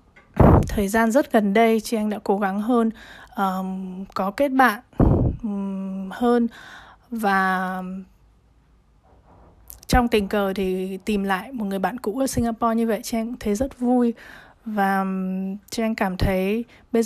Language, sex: Vietnamese, female